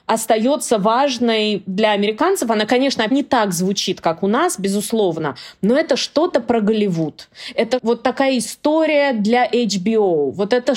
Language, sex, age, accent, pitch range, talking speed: Russian, female, 20-39, native, 190-250 Hz, 145 wpm